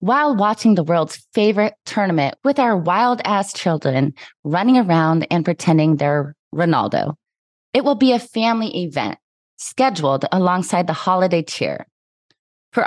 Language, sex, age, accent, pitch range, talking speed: English, female, 20-39, American, 160-215 Hz, 135 wpm